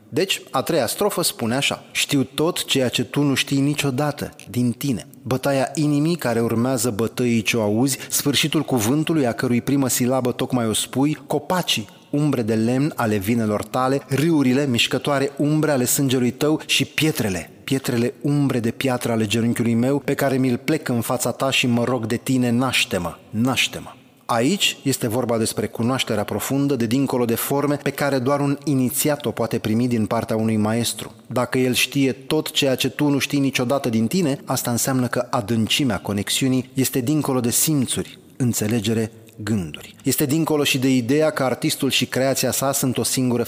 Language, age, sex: Romanian, 30-49, male